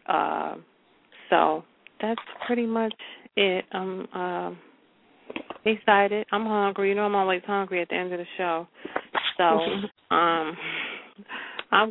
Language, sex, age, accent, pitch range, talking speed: English, female, 40-59, American, 175-215 Hz, 125 wpm